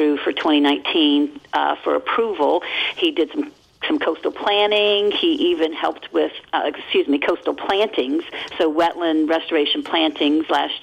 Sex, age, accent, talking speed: female, 50-69, American, 140 wpm